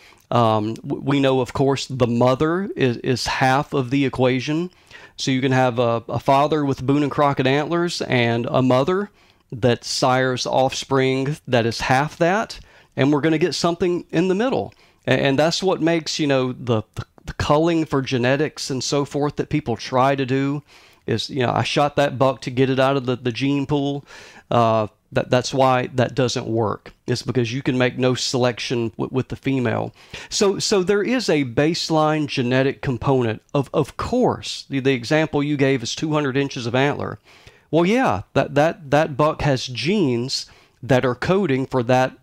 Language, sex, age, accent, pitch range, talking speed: English, male, 40-59, American, 125-150 Hz, 190 wpm